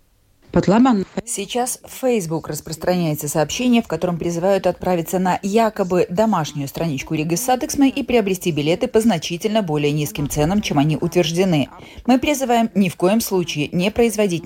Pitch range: 170-230 Hz